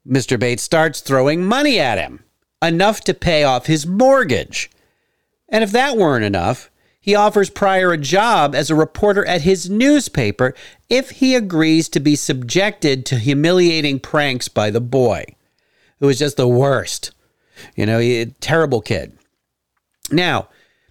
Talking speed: 150 wpm